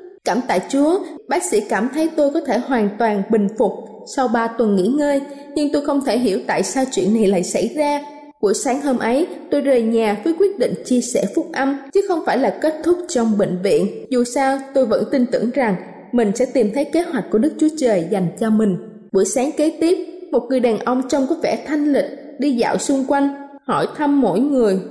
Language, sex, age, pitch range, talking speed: Vietnamese, female, 20-39, 230-295 Hz, 230 wpm